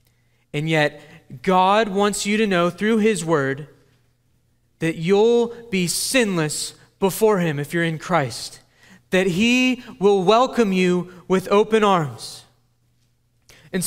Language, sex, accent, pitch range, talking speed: English, male, American, 125-200 Hz, 125 wpm